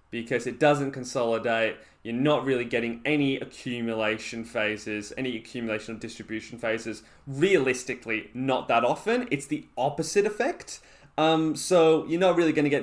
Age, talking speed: 20-39, 150 wpm